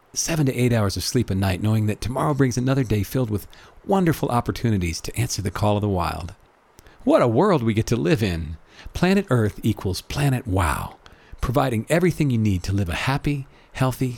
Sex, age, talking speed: male, 50-69, 200 wpm